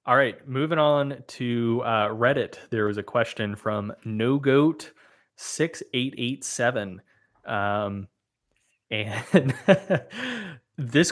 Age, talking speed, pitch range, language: 20-39, 115 wpm, 105-135 Hz, English